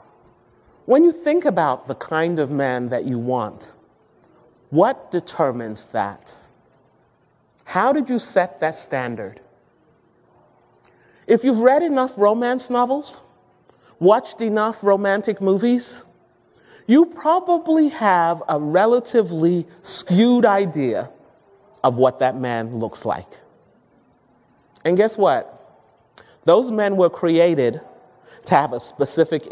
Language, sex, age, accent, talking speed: English, male, 40-59, American, 110 wpm